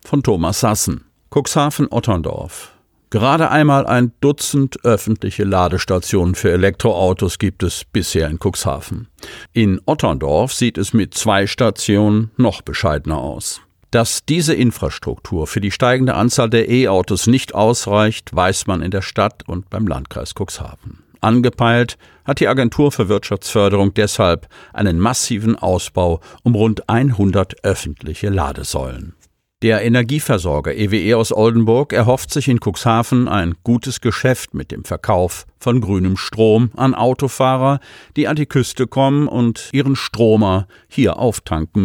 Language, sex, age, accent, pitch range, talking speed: German, male, 50-69, German, 95-120 Hz, 130 wpm